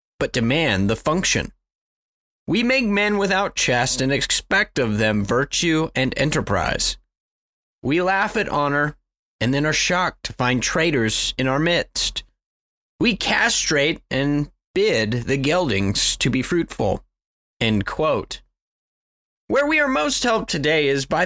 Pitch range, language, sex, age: 120-200 Hz, English, male, 30-49